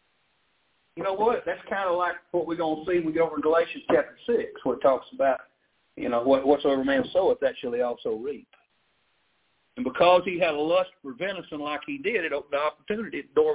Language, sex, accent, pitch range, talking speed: English, male, American, 160-255 Hz, 230 wpm